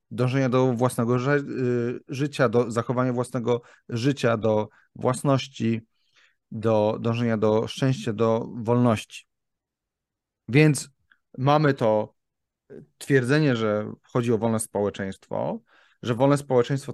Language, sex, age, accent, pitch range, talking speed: Polish, male, 30-49, native, 115-140 Hz, 100 wpm